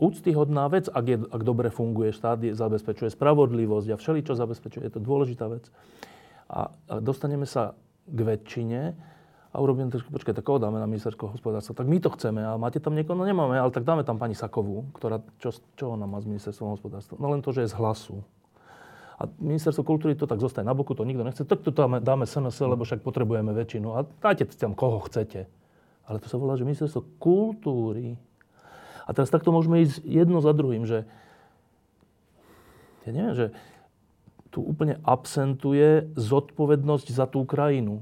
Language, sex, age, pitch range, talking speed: Slovak, male, 30-49, 115-145 Hz, 180 wpm